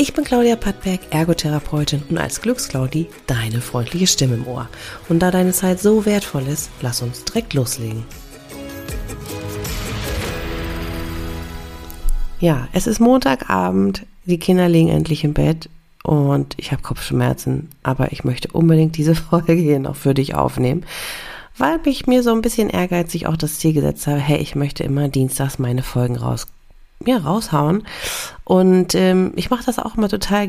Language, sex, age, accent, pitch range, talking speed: German, female, 40-59, German, 135-185 Hz, 155 wpm